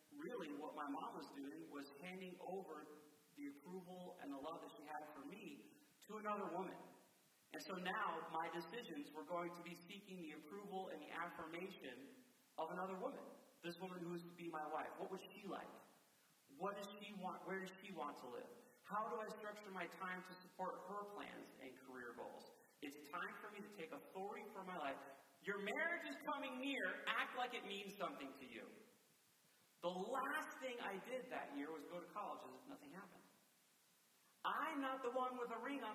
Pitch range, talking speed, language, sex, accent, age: 150-205 Hz, 200 wpm, English, male, American, 40-59